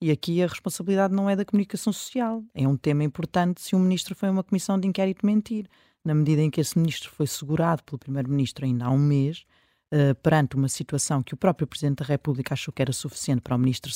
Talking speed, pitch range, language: 230 wpm, 150-205 Hz, Portuguese